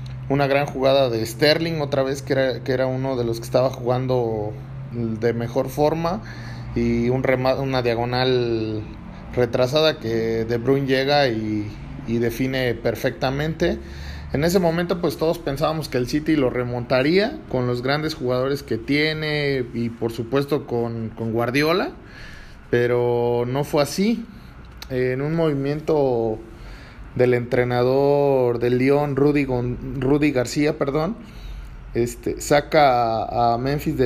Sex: male